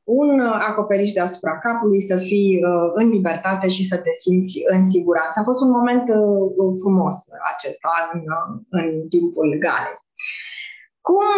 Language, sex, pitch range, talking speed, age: Romanian, female, 205-280 Hz, 150 wpm, 20-39